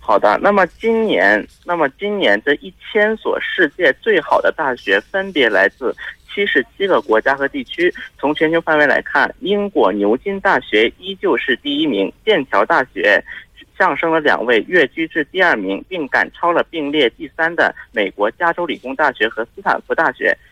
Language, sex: Korean, male